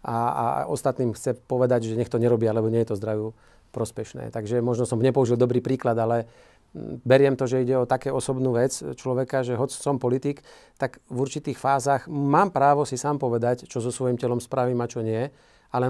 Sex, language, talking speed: male, Slovak, 200 wpm